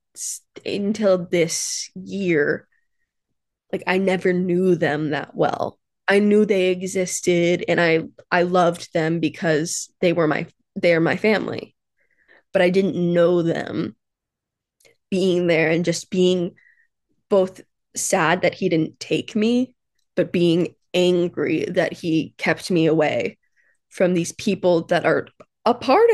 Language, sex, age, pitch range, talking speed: English, female, 20-39, 175-200 Hz, 135 wpm